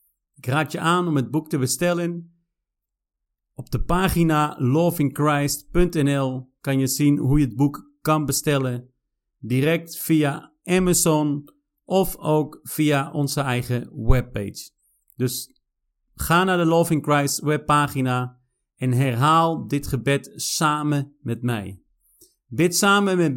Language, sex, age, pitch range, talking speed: Dutch, male, 50-69, 130-170 Hz, 125 wpm